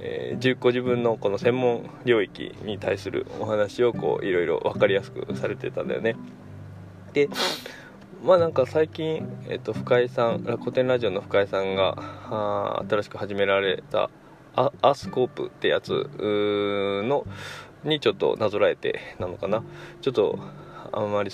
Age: 20-39